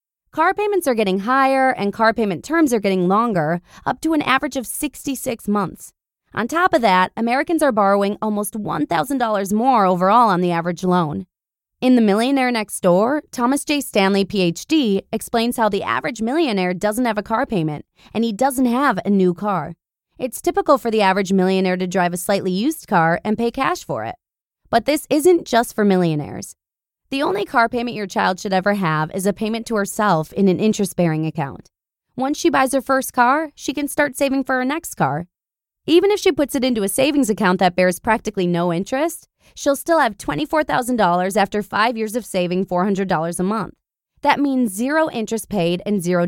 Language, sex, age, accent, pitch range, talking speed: English, female, 20-39, American, 185-270 Hz, 195 wpm